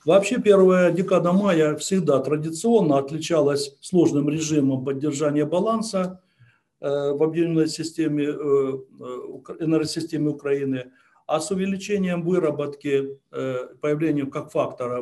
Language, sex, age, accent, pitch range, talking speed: Ukrainian, male, 60-79, native, 140-180 Hz, 90 wpm